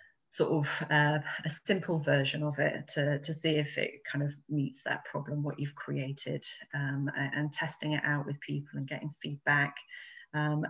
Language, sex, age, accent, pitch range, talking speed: English, female, 30-49, British, 145-160 Hz, 185 wpm